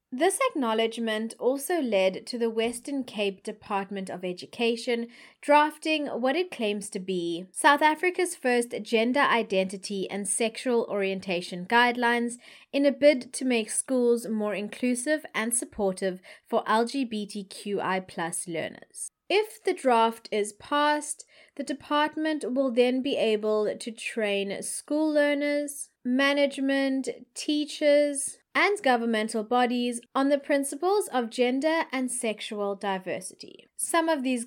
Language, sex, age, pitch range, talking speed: English, female, 20-39, 215-295 Hz, 120 wpm